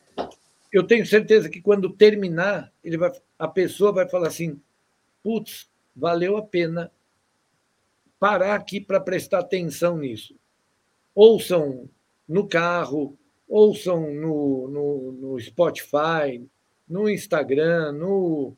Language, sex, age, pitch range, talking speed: Portuguese, male, 60-79, 155-200 Hz, 110 wpm